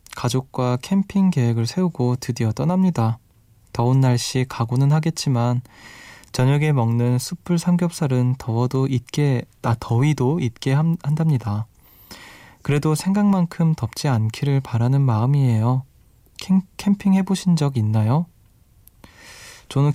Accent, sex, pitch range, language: native, male, 115-150 Hz, Korean